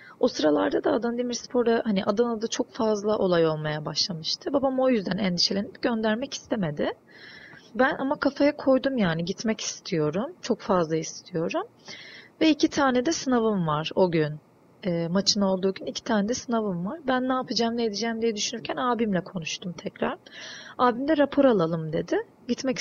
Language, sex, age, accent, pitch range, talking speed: Turkish, female, 30-49, native, 185-260 Hz, 155 wpm